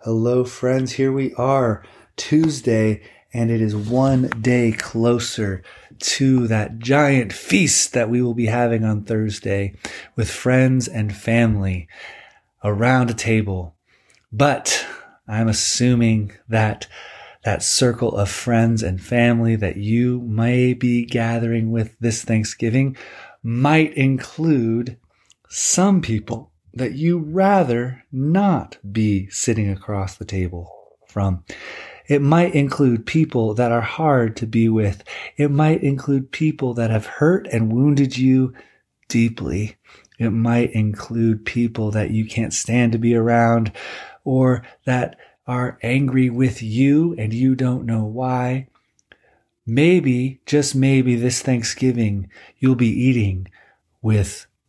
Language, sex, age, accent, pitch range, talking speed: English, male, 30-49, American, 105-130 Hz, 125 wpm